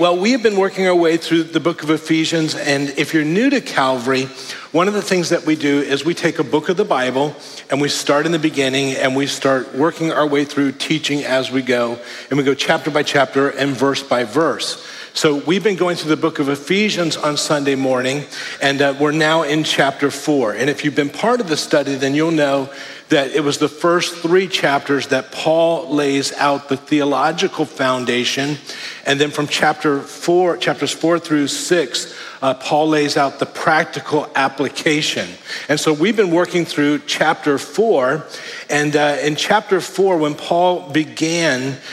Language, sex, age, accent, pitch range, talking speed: English, male, 40-59, American, 140-160 Hz, 190 wpm